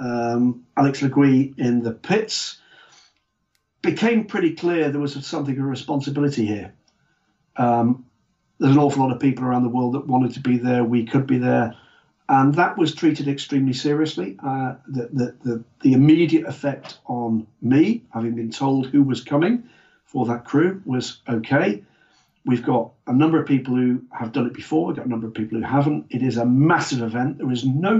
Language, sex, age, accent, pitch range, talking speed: English, male, 50-69, British, 120-145 Hz, 185 wpm